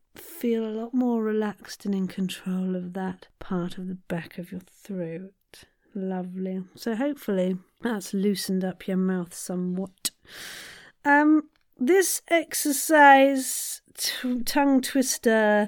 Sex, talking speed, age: female, 125 wpm, 40-59